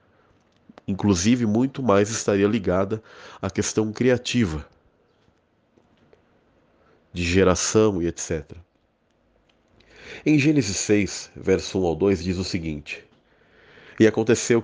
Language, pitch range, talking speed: Portuguese, 90-115 Hz, 100 wpm